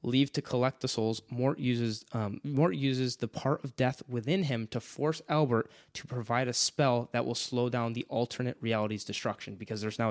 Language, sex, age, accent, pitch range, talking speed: English, male, 20-39, American, 115-140 Hz, 200 wpm